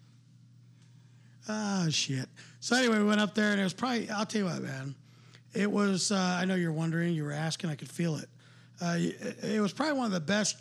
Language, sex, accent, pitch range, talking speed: English, male, American, 155-190 Hz, 225 wpm